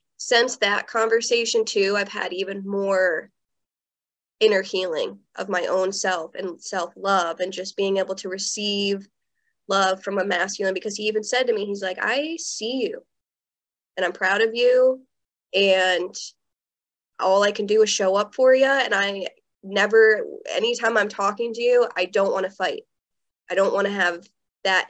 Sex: female